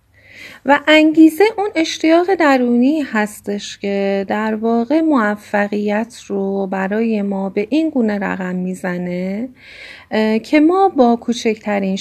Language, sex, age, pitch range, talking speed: Persian, female, 30-49, 190-245 Hz, 110 wpm